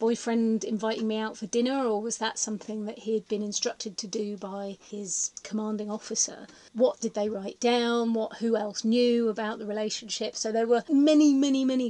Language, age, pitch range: English, 30-49, 215-240 Hz